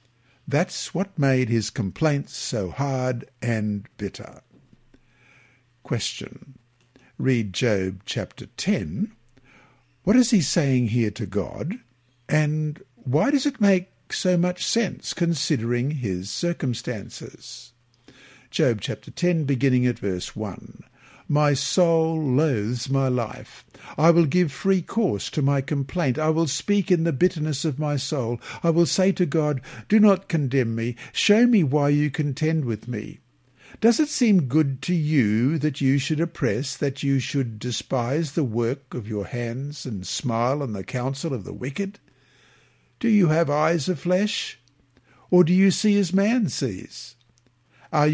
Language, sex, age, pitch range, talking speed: English, male, 60-79, 125-165 Hz, 145 wpm